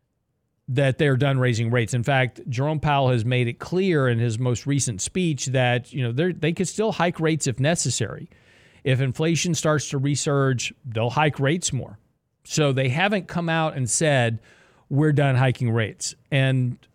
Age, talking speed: 40-59, 175 wpm